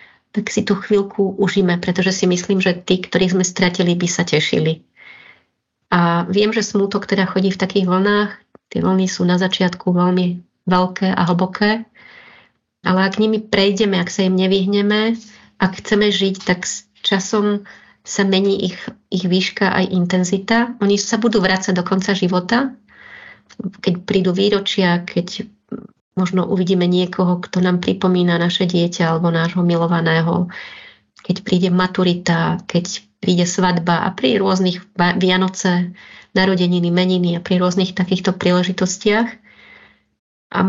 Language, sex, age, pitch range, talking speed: Slovak, female, 30-49, 180-205 Hz, 140 wpm